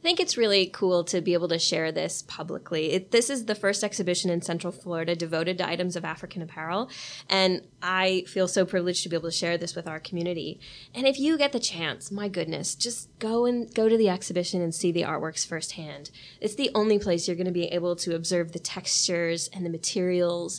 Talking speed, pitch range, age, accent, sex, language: 225 wpm, 170-205 Hz, 20-39, American, female, English